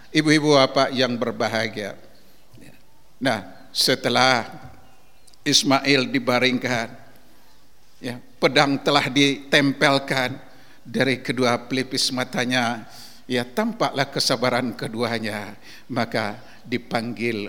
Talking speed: 75 wpm